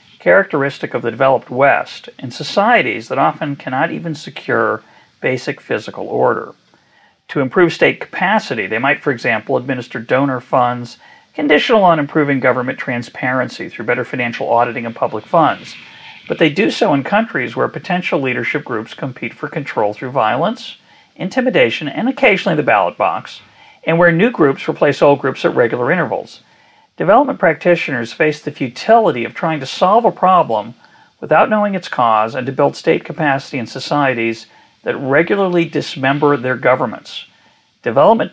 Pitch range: 130-175 Hz